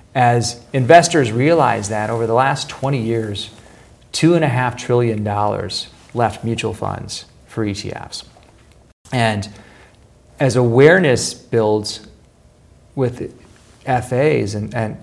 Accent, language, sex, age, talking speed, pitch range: American, English, male, 40-59, 110 wpm, 110-130 Hz